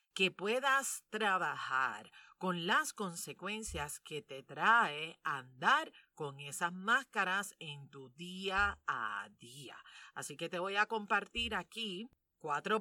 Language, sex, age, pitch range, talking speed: Spanish, female, 40-59, 160-220 Hz, 120 wpm